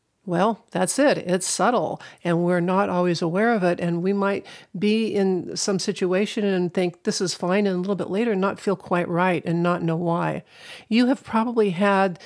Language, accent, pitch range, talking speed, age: English, American, 175-210 Hz, 200 wpm, 50-69